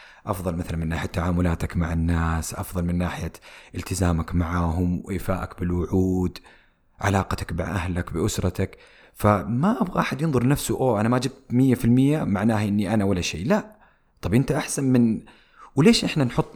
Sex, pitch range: male, 100-135 Hz